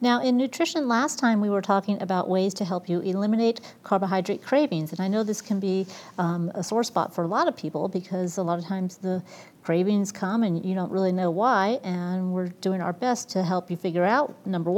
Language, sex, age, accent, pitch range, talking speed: English, female, 40-59, American, 180-215 Hz, 225 wpm